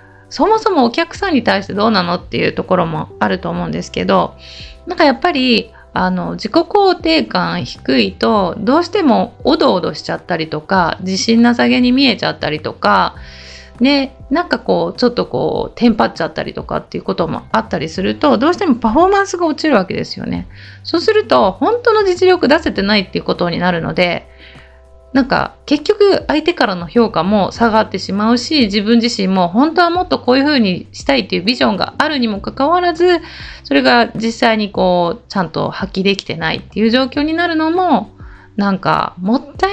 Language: Japanese